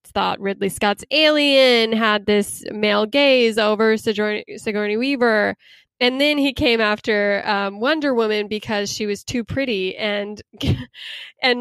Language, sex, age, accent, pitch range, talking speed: English, female, 10-29, American, 205-245 Hz, 140 wpm